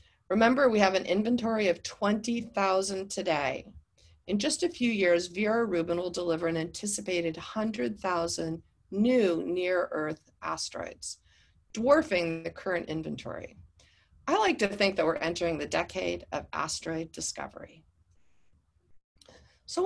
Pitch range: 160-220 Hz